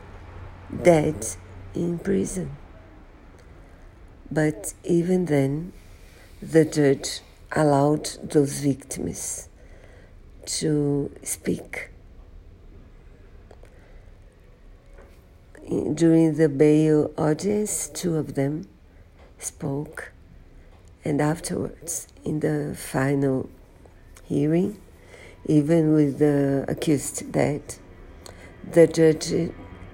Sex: female